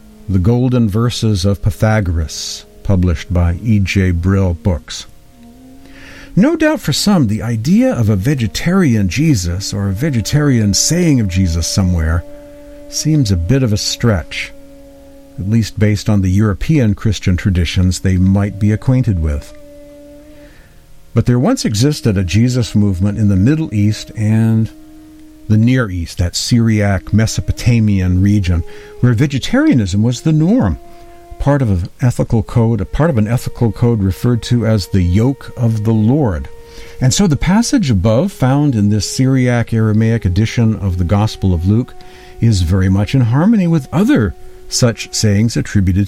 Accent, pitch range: American, 95-130 Hz